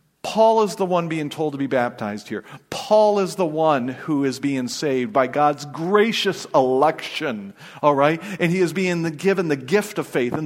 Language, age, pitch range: English, 40-59, 160-220 Hz